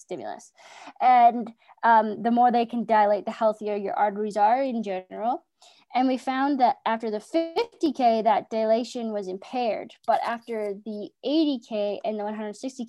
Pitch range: 210-255 Hz